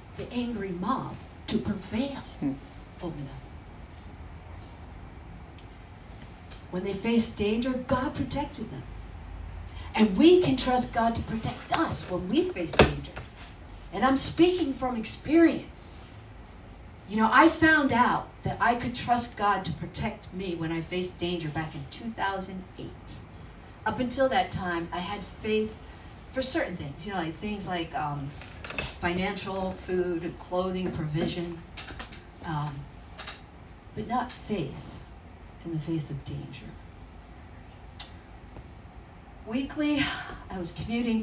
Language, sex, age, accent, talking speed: English, female, 50-69, American, 120 wpm